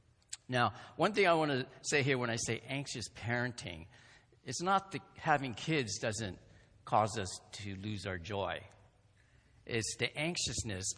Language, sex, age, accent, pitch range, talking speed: English, male, 50-69, American, 105-135 Hz, 155 wpm